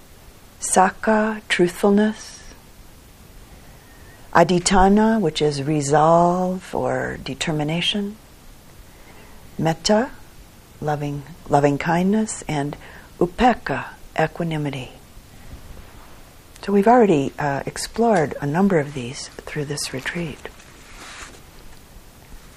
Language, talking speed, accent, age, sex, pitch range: English, 65 wpm, American, 50-69, female, 140-180 Hz